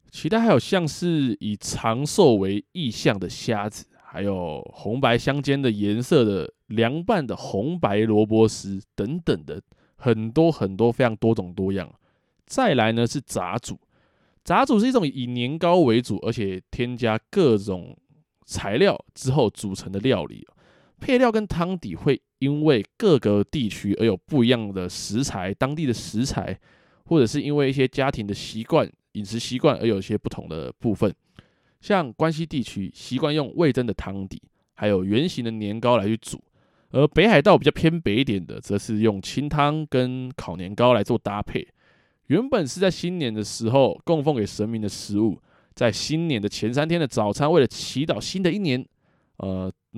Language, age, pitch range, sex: Chinese, 20-39, 105-150 Hz, male